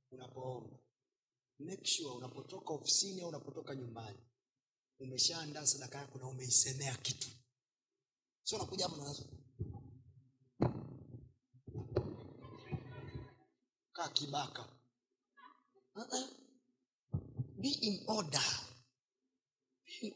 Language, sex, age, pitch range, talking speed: Swahili, male, 30-49, 125-180 Hz, 80 wpm